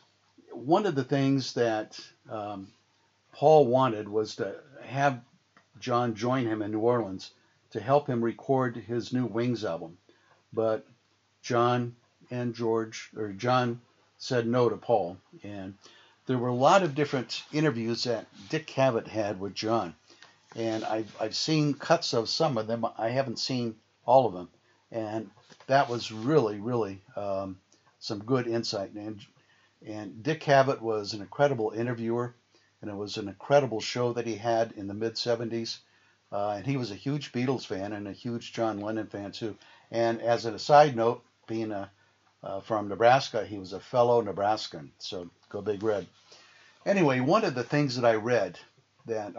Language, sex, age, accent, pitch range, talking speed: English, male, 50-69, American, 105-125 Hz, 165 wpm